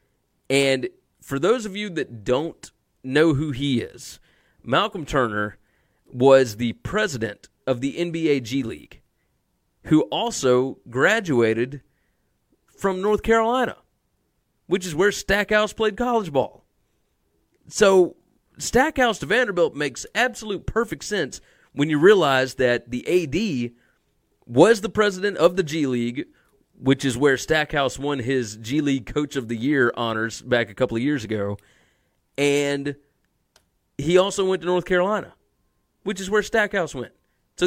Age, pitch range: 30-49, 120-185 Hz